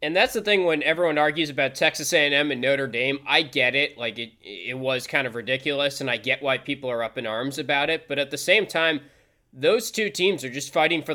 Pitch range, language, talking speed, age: 125-155 Hz, English, 250 wpm, 20-39